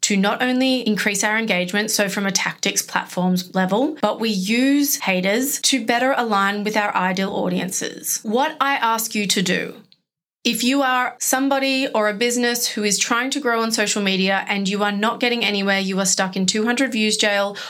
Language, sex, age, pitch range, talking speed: English, female, 30-49, 195-235 Hz, 190 wpm